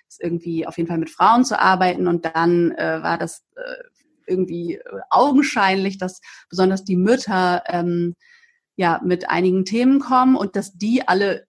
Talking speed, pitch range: 155 wpm, 175-205 Hz